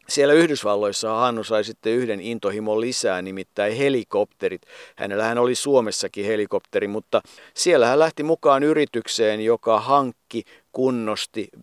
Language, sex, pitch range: Finnish, male, 95-135 Hz